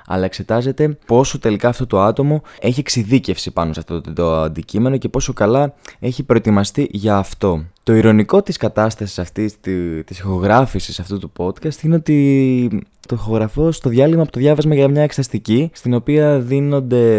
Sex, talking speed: male, 165 wpm